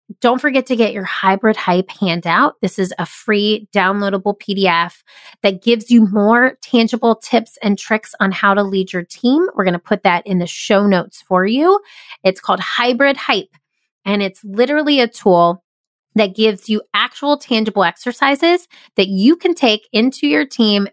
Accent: American